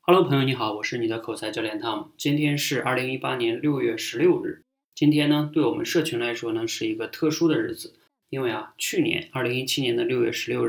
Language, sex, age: Chinese, male, 20-39